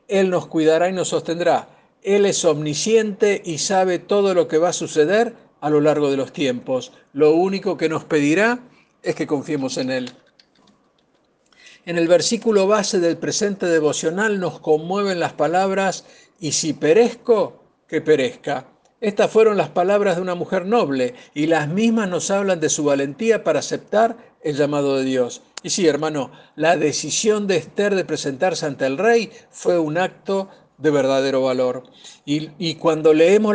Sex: male